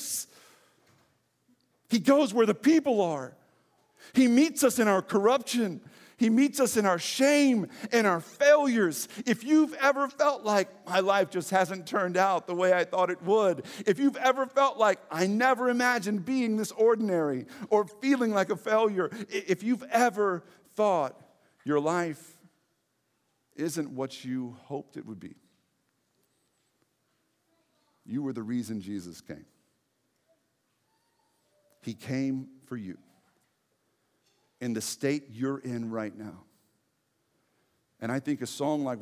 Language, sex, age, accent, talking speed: English, male, 50-69, American, 140 wpm